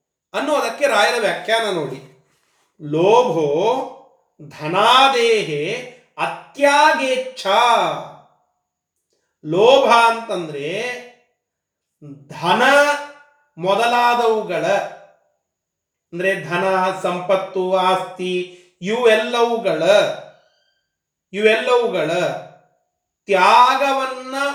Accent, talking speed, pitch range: native, 45 wpm, 185-265 Hz